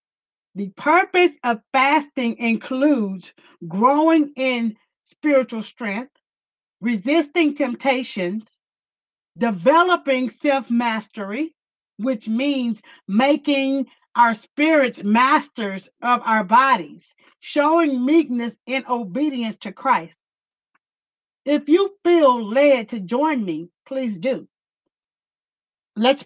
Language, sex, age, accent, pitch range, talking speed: English, female, 50-69, American, 220-285 Hz, 90 wpm